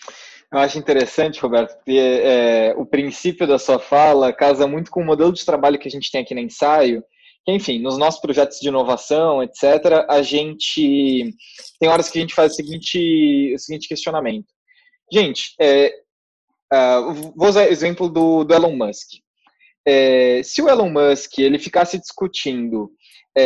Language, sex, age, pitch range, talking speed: Portuguese, male, 20-39, 140-195 Hz, 145 wpm